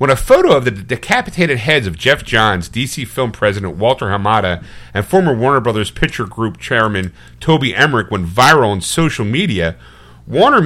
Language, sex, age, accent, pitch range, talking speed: English, male, 40-59, American, 90-140 Hz, 170 wpm